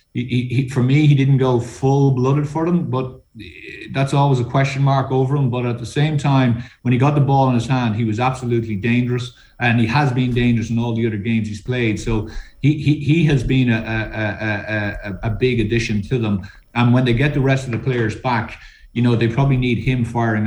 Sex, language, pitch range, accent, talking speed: male, English, 110-135 Hz, Irish, 235 wpm